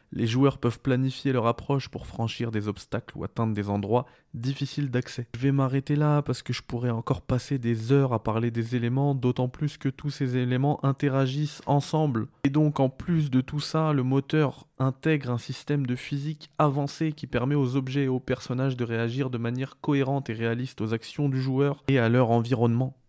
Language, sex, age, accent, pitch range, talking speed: French, male, 20-39, French, 115-140 Hz, 200 wpm